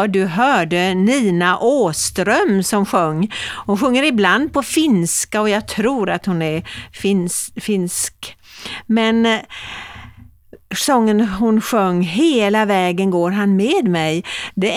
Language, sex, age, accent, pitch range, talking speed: Swedish, female, 50-69, native, 190-250 Hz, 120 wpm